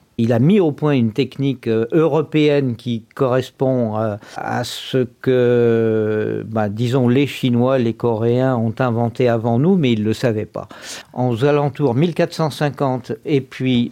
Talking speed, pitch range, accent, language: 150 wpm, 120-145 Hz, French, French